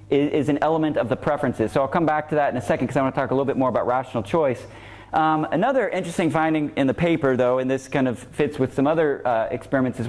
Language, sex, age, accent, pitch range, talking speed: English, male, 30-49, American, 115-155 Hz, 275 wpm